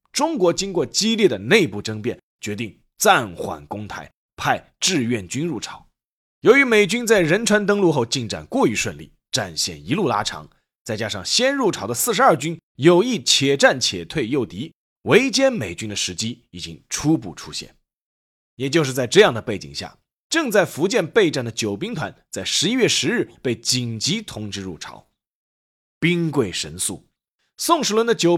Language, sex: Chinese, male